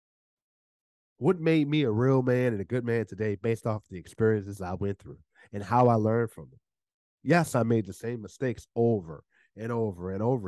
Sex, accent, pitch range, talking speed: male, American, 95-120 Hz, 200 wpm